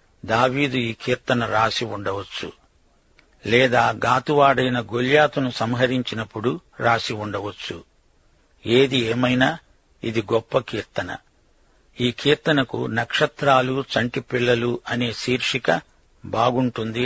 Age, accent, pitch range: 60-79, native, 110-135 Hz